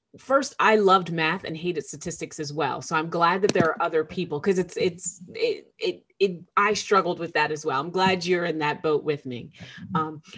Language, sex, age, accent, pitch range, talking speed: English, female, 30-49, American, 160-195 Hz, 220 wpm